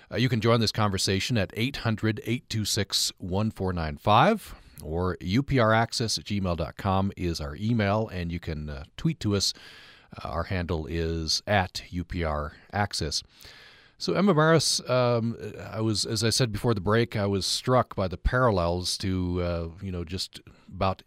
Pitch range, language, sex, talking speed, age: 90-115 Hz, English, male, 150 wpm, 40-59